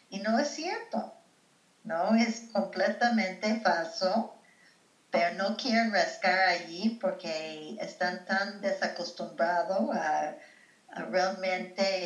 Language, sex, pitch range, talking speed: Spanish, female, 165-200 Hz, 100 wpm